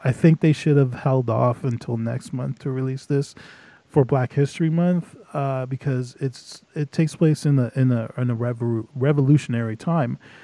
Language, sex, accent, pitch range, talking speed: English, male, American, 120-140 Hz, 190 wpm